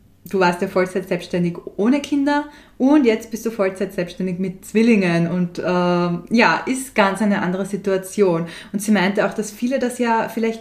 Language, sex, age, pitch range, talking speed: German, female, 20-39, 195-230 Hz, 180 wpm